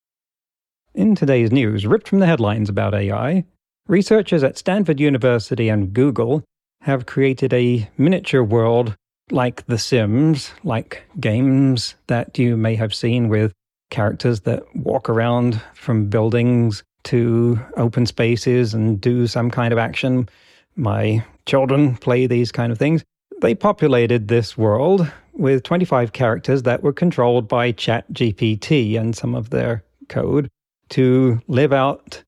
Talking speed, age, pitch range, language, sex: 135 wpm, 40-59, 115-140 Hz, English, male